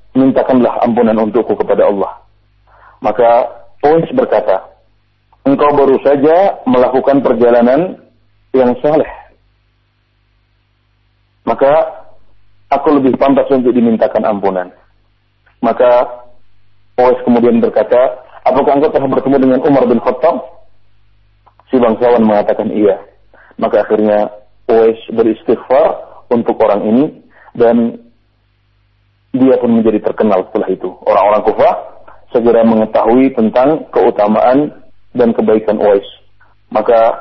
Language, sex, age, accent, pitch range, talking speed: Indonesian, male, 40-59, native, 105-130 Hz, 100 wpm